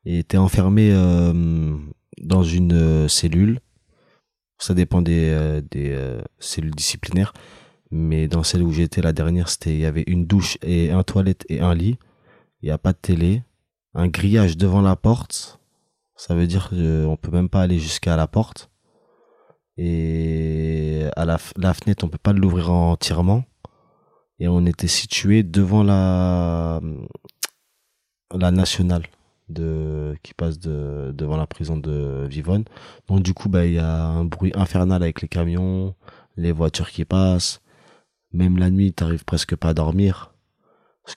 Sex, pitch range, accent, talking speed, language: male, 80-95 Hz, French, 165 wpm, French